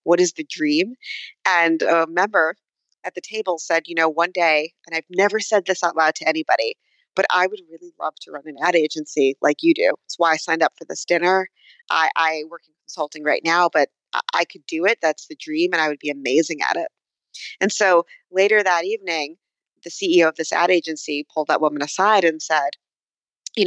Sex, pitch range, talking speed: female, 160-205 Hz, 220 wpm